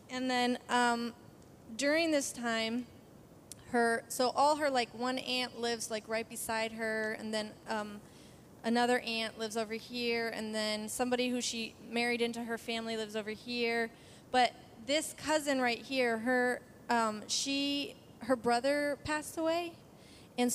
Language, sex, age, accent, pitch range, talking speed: English, female, 20-39, American, 225-255 Hz, 150 wpm